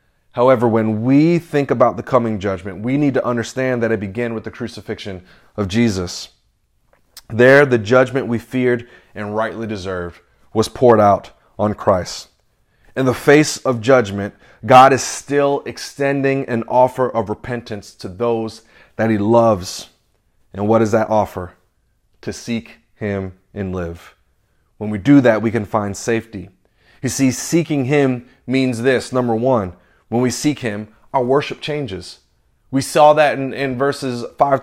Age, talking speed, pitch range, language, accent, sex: 30-49, 160 wpm, 110-135 Hz, English, American, male